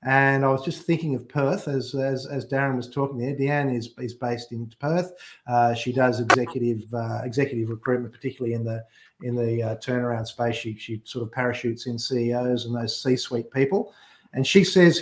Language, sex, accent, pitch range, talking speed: English, male, Australian, 120-140 Hz, 200 wpm